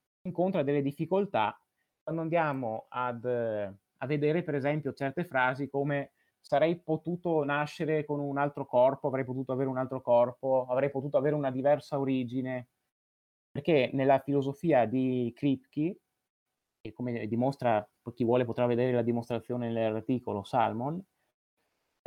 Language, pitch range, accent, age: Italian, 120-145 Hz, native, 30-49